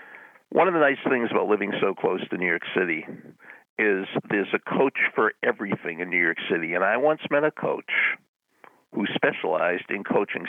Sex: male